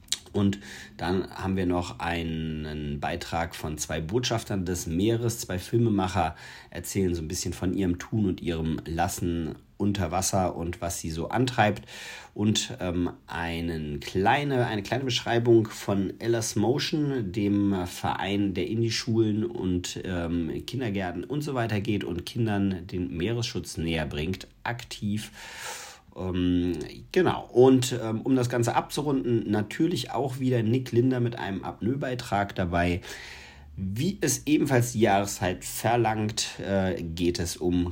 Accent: German